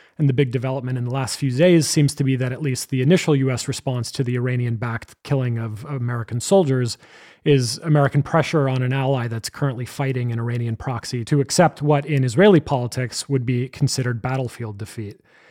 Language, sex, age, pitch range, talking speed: English, male, 30-49, 125-150 Hz, 190 wpm